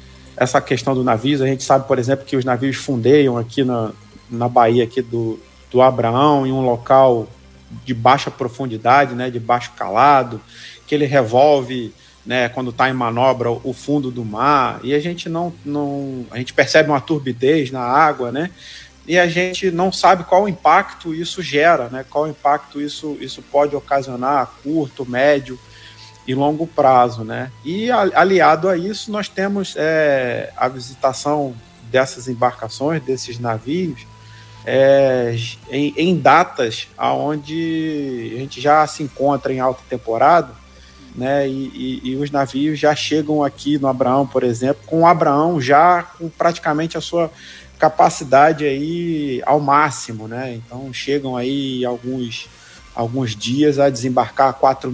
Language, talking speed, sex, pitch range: Portuguese, 155 wpm, male, 125-150 Hz